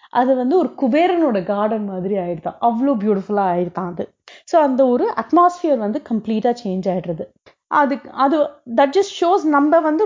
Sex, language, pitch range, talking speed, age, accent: female, Tamil, 200-305 Hz, 155 wpm, 30-49, native